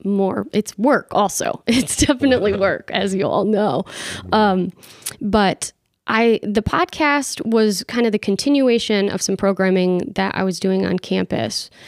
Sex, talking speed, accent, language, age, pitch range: female, 150 wpm, American, English, 20-39, 190-240 Hz